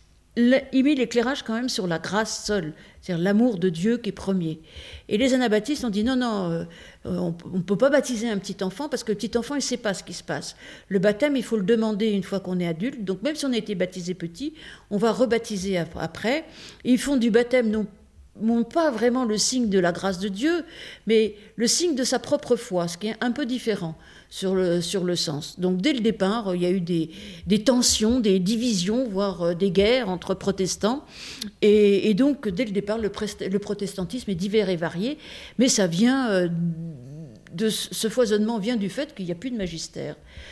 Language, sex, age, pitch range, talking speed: French, female, 50-69, 180-235 Hz, 215 wpm